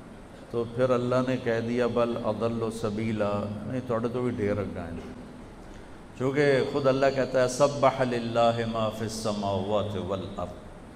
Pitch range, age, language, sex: 110-130 Hz, 50-69, Urdu, male